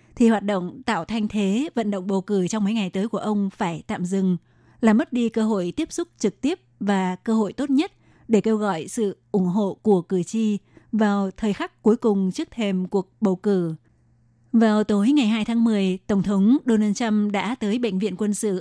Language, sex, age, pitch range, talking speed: Vietnamese, female, 20-39, 195-230 Hz, 220 wpm